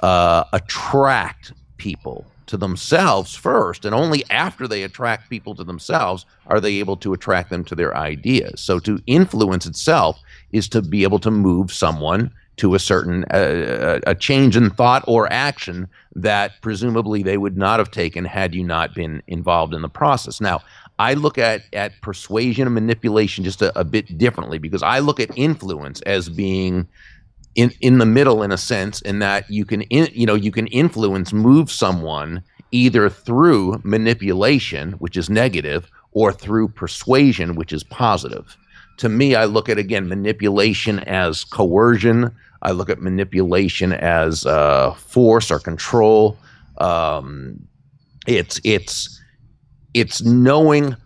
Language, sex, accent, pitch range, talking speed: English, male, American, 95-120 Hz, 155 wpm